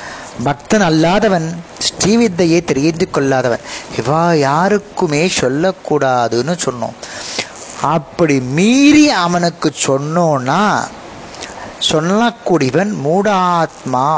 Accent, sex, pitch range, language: native, male, 135-175 Hz, Tamil